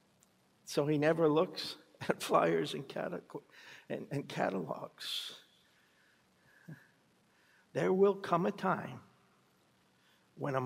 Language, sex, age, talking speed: English, male, 60-79, 95 wpm